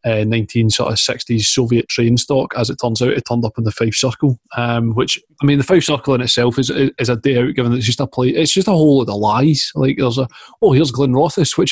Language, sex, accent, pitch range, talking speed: English, male, British, 120-140 Hz, 270 wpm